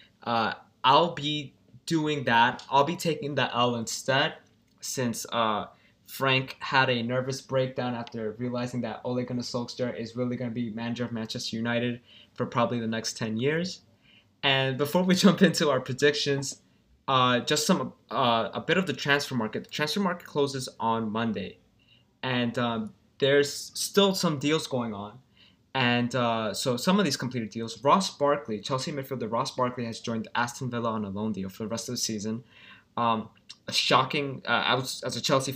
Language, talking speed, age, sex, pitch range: English, 180 wpm, 20-39, male, 115-140 Hz